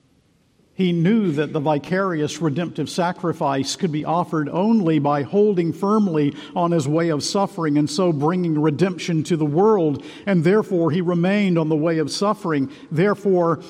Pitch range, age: 140-175 Hz, 50-69